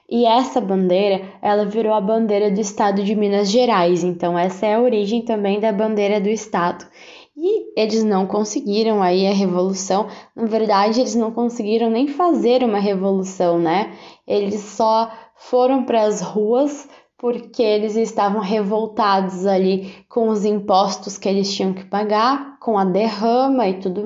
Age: 10-29